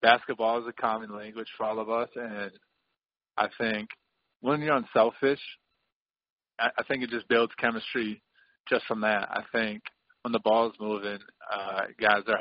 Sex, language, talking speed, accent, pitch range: male, English, 165 wpm, American, 105-115 Hz